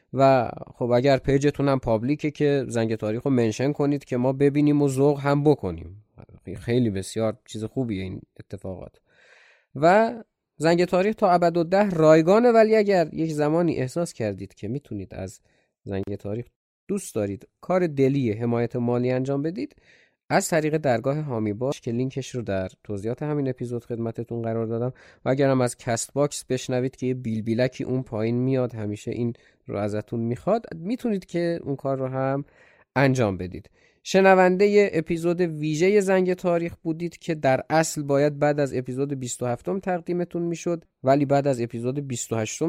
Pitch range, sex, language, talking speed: 115-160 Hz, male, Persian, 155 wpm